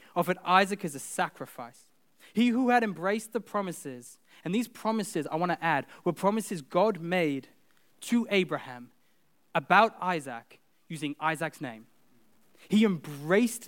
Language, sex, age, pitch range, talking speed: English, male, 20-39, 155-215 Hz, 135 wpm